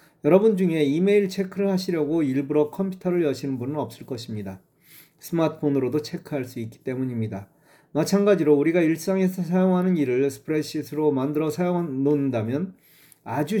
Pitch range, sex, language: 130-175 Hz, male, Korean